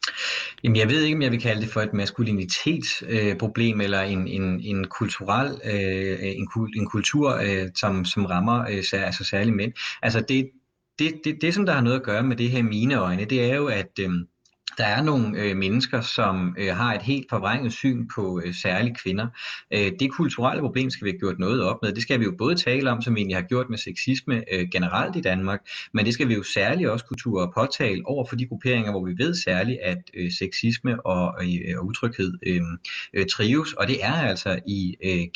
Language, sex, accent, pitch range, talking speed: Danish, male, native, 95-125 Hz, 220 wpm